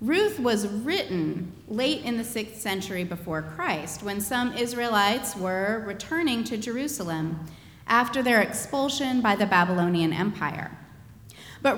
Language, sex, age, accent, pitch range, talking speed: English, female, 30-49, American, 170-245 Hz, 125 wpm